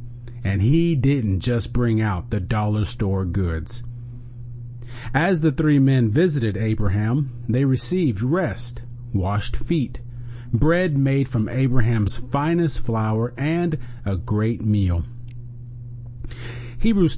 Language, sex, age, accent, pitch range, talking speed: English, male, 40-59, American, 115-135 Hz, 110 wpm